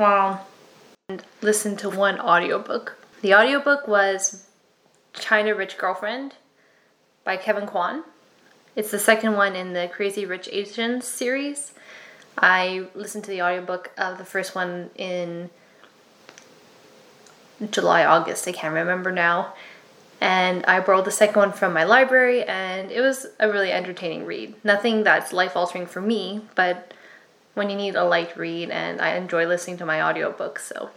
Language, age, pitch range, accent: English, 10-29, 185-220 Hz, American